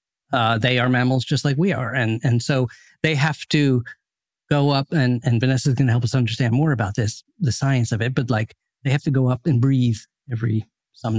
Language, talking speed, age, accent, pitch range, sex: English, 230 wpm, 50-69, American, 120-155 Hz, male